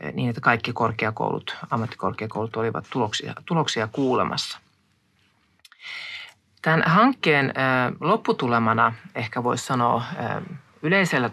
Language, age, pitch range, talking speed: Finnish, 30-49, 110-135 Hz, 80 wpm